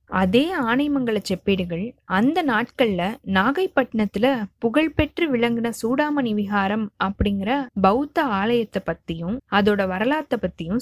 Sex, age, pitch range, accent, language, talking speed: female, 20-39, 195-265 Hz, native, Tamil, 100 wpm